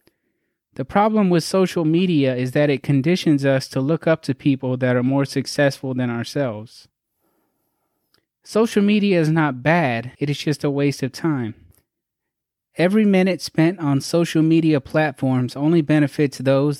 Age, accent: 20-39, American